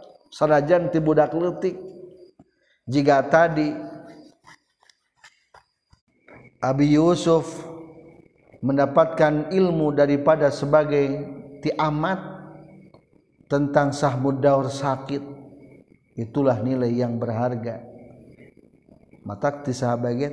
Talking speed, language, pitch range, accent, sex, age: 70 wpm, Indonesian, 130-185 Hz, native, male, 50-69